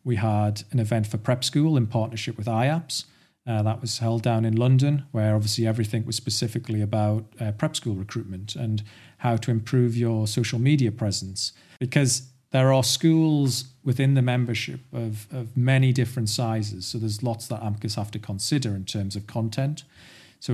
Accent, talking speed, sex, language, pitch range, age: British, 180 wpm, male, English, 105-125 Hz, 40-59